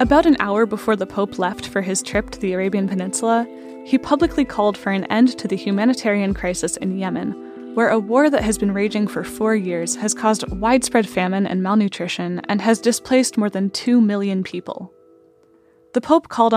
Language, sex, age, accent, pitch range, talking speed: English, female, 10-29, American, 190-235 Hz, 190 wpm